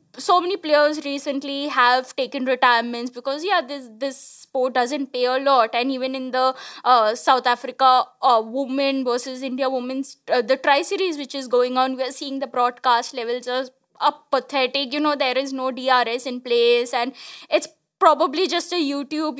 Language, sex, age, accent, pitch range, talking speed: English, female, 20-39, Indian, 240-280 Hz, 175 wpm